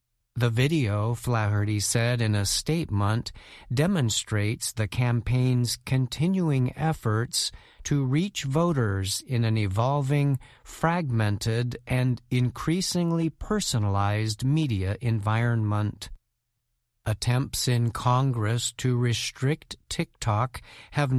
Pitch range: 110-135 Hz